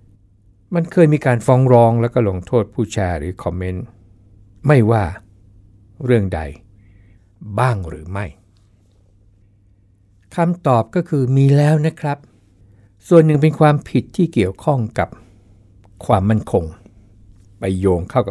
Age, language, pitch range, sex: 60-79, Thai, 100-120 Hz, male